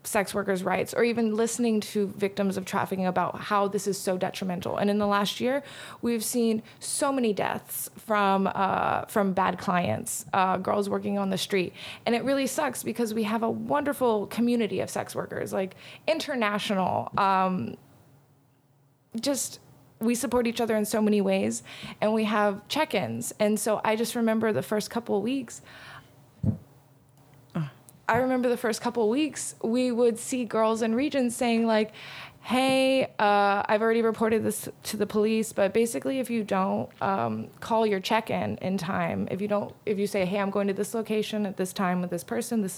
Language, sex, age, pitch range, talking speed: English, female, 20-39, 185-225 Hz, 180 wpm